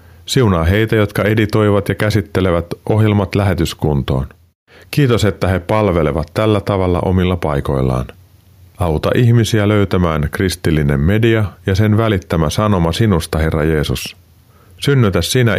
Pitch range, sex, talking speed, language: 80-105 Hz, male, 115 wpm, Finnish